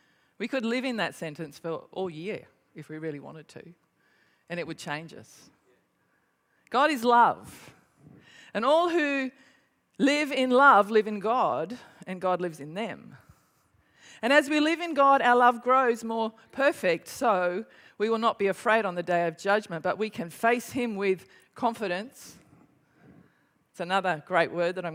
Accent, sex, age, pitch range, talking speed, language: Australian, female, 40-59, 185-265 Hz, 170 wpm, English